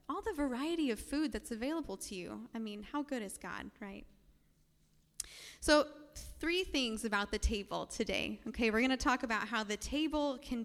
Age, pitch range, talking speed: 10-29, 215-280 Hz, 185 wpm